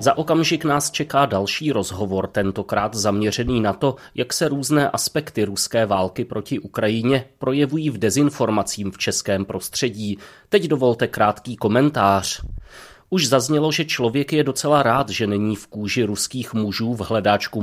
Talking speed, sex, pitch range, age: 145 wpm, male, 105-130 Hz, 30-49